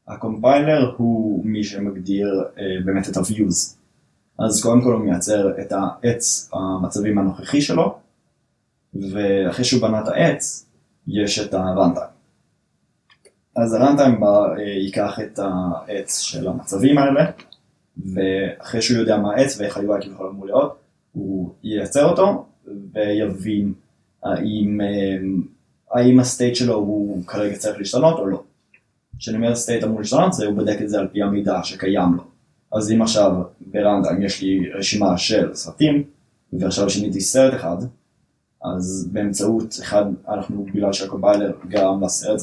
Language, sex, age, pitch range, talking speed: Hebrew, male, 20-39, 95-110 Hz, 135 wpm